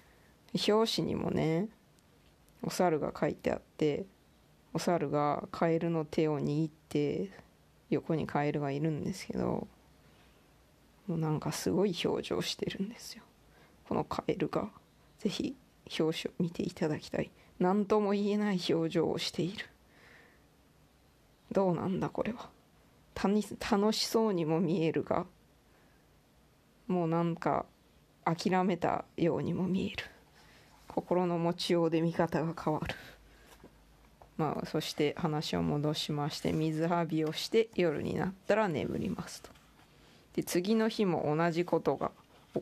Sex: female